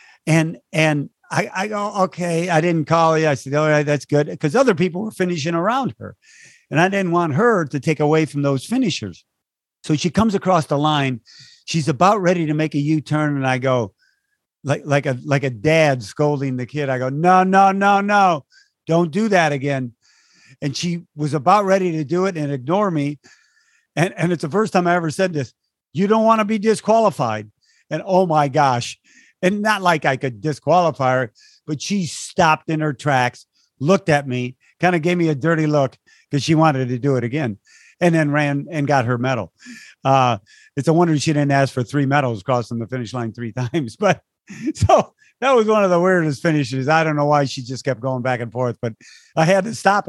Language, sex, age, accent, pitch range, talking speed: English, male, 50-69, American, 135-185 Hz, 215 wpm